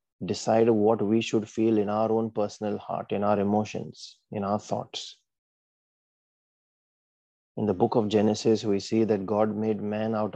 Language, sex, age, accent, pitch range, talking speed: English, male, 30-49, Indian, 100-115 Hz, 160 wpm